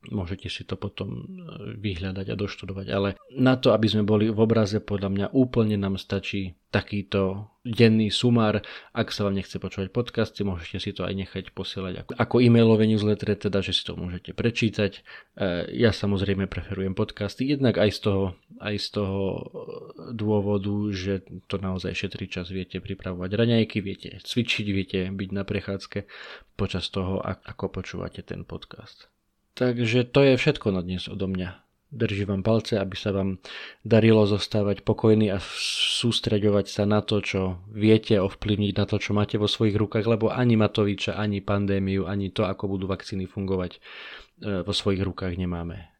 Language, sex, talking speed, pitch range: Slovak, male, 165 wpm, 95-110 Hz